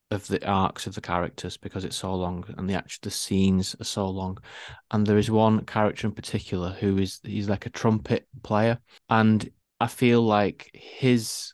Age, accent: 20-39, British